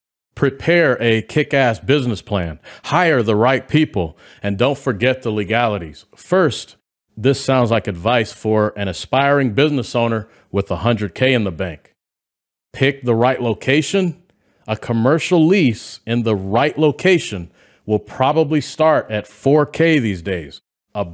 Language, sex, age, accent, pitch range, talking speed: English, male, 40-59, American, 105-145 Hz, 140 wpm